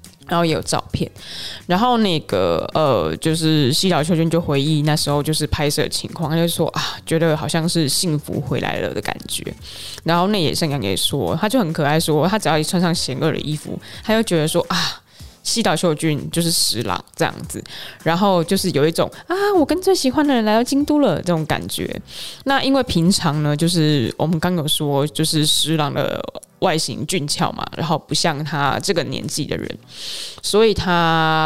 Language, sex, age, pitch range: Chinese, female, 20-39, 150-180 Hz